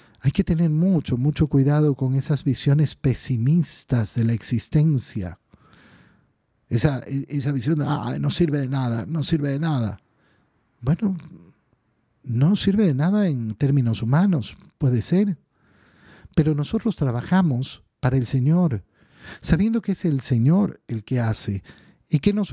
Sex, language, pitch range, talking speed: male, Spanish, 125-175 Hz, 140 wpm